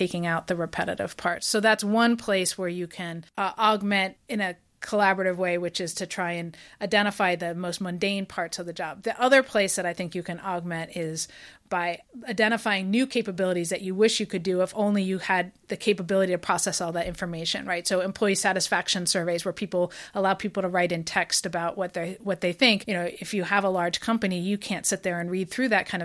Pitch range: 175-200 Hz